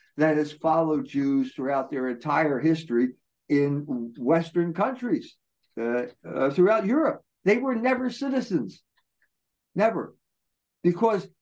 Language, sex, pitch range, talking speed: English, male, 135-200 Hz, 110 wpm